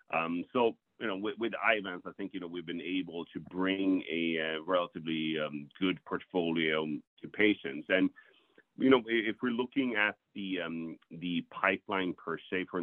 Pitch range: 80-100 Hz